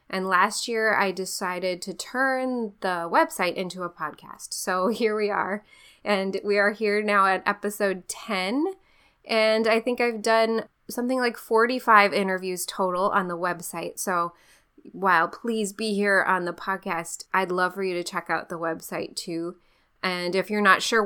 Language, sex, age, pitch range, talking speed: English, female, 10-29, 180-225 Hz, 170 wpm